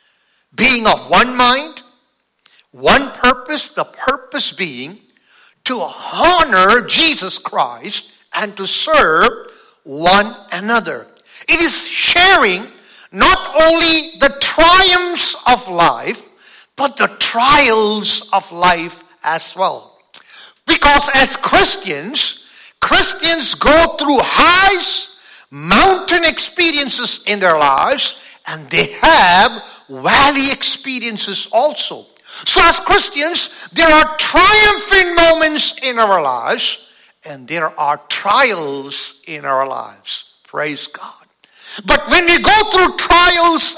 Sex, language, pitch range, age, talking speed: male, English, 230-345 Hz, 50-69, 105 wpm